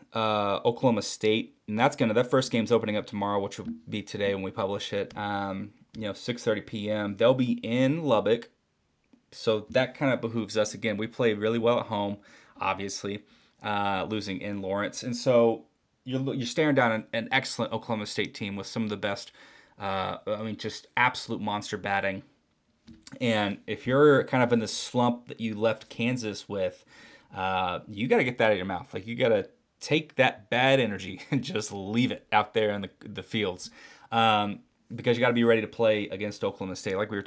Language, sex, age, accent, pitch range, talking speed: English, male, 30-49, American, 100-115 Hz, 205 wpm